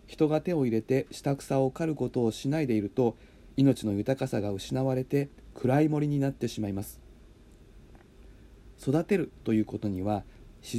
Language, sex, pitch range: Japanese, male, 105-140 Hz